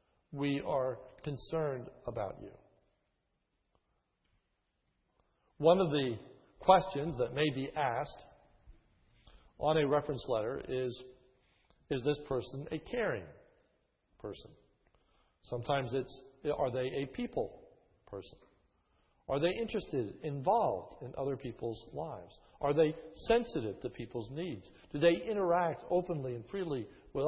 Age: 50-69